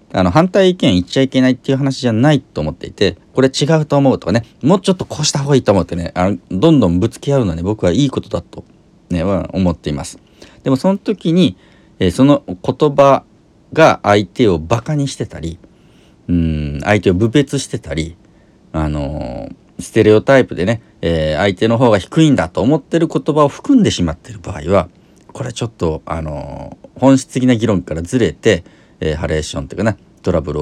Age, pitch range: 40-59, 85-140 Hz